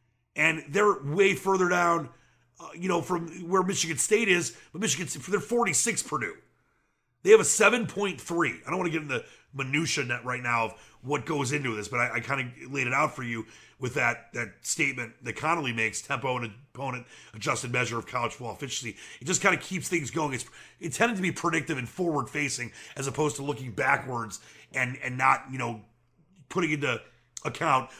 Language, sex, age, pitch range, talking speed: English, male, 30-49, 125-170 Hz, 200 wpm